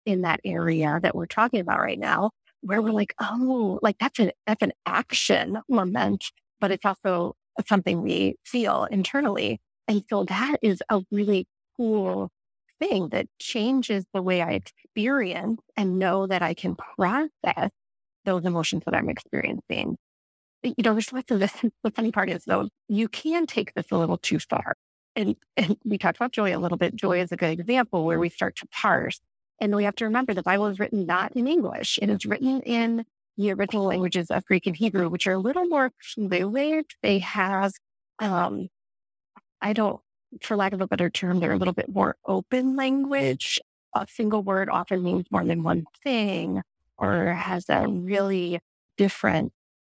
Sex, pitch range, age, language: female, 185-230 Hz, 30-49, English